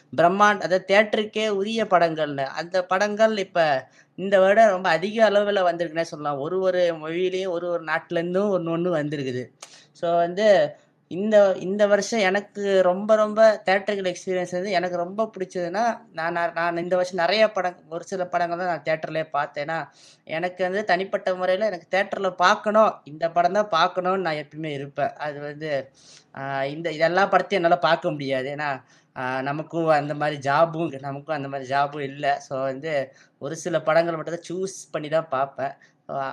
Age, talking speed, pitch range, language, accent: 20-39, 155 wpm, 150-190 Hz, Tamil, native